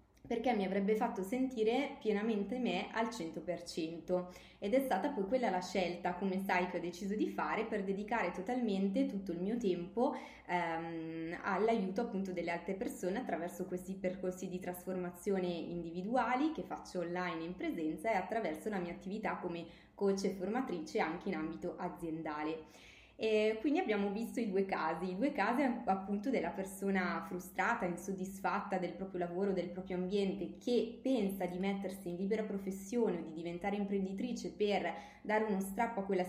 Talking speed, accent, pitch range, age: 160 wpm, native, 180-220 Hz, 20-39